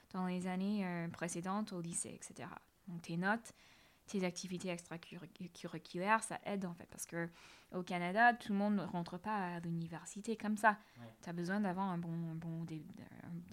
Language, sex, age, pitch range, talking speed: French, female, 20-39, 175-220 Hz, 180 wpm